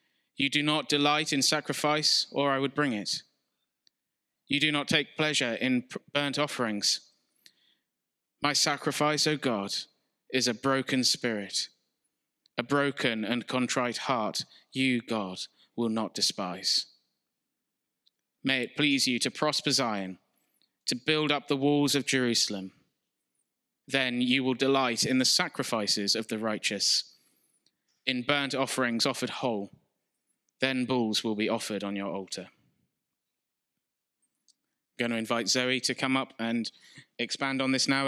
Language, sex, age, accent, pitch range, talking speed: English, male, 20-39, British, 120-140 Hz, 135 wpm